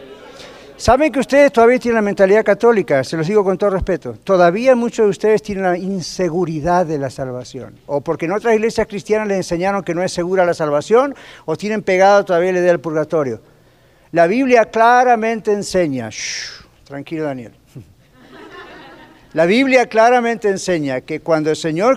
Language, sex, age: Spanish, male, 50-69